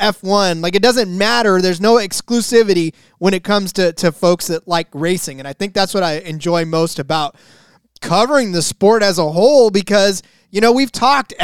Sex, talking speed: male, 195 wpm